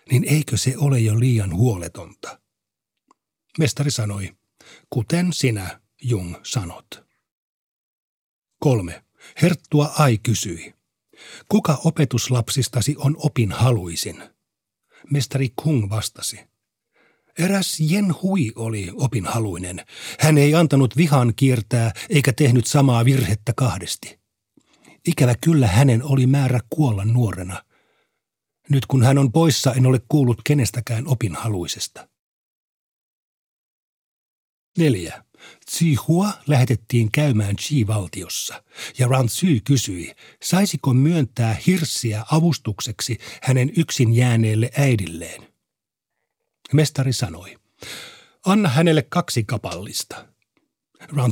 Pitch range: 110-150 Hz